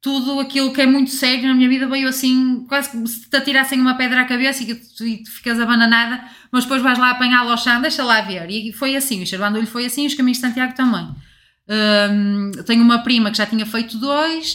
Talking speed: 230 wpm